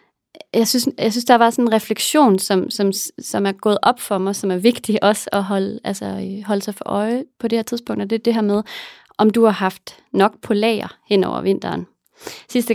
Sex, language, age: female, English, 30-49